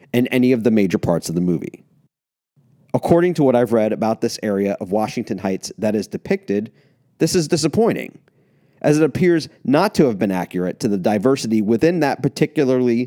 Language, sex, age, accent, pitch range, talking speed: English, male, 40-59, American, 110-145 Hz, 185 wpm